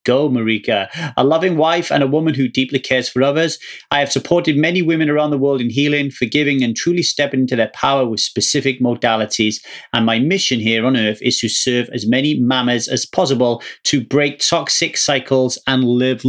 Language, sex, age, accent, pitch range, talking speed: English, male, 30-49, British, 125-160 Hz, 195 wpm